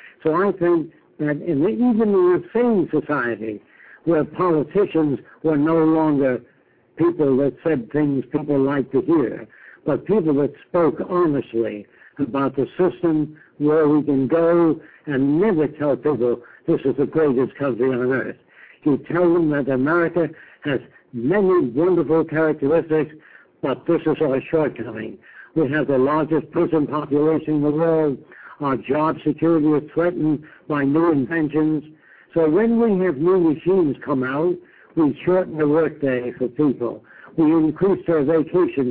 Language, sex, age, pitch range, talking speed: English, male, 60-79, 140-170 Hz, 145 wpm